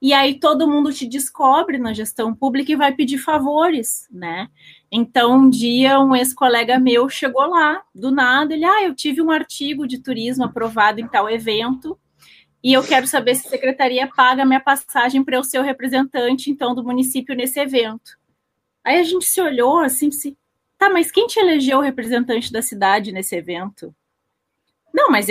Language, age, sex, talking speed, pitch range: Portuguese, 20-39, female, 185 wpm, 235-285 Hz